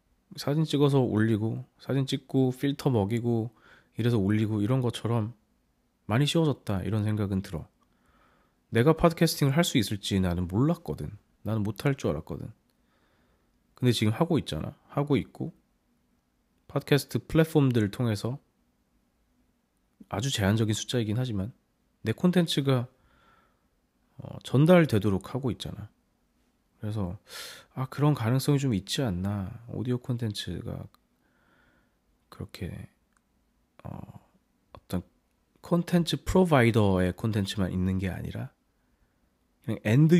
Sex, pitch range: male, 105-140 Hz